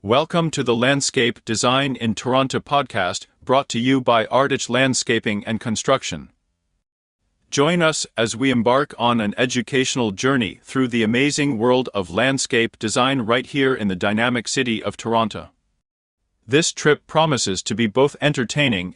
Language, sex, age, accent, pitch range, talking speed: English, male, 40-59, American, 110-135 Hz, 150 wpm